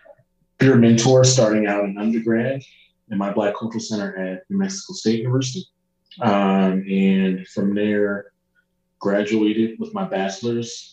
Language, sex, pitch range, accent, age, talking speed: English, male, 95-125 Hz, American, 20-39, 130 wpm